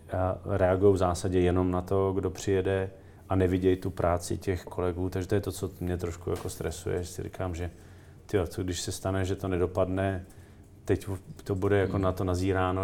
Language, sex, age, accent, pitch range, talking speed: Czech, male, 40-59, native, 90-100 Hz, 195 wpm